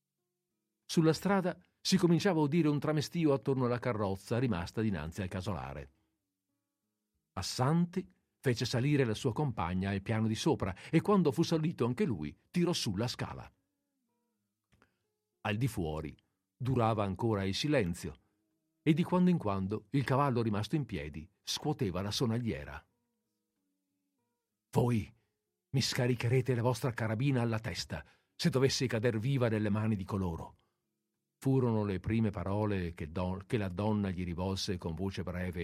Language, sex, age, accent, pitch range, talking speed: Italian, male, 50-69, native, 95-140 Hz, 145 wpm